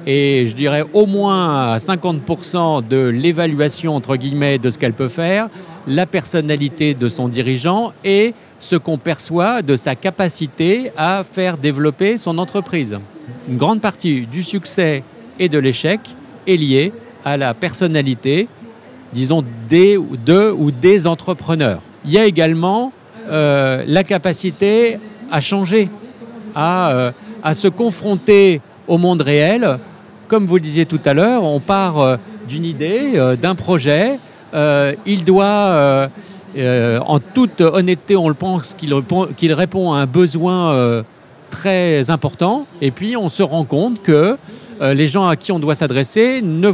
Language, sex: French, male